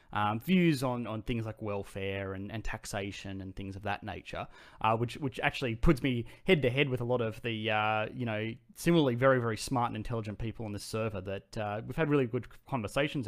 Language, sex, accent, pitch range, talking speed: English, male, Australian, 100-125 Hz, 220 wpm